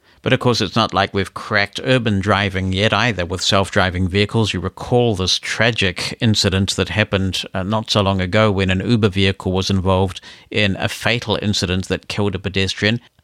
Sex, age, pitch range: male, 50-69, 95-115 Hz